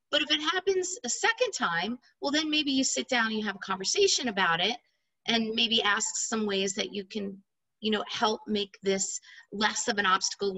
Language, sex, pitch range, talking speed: English, female, 205-265 Hz, 210 wpm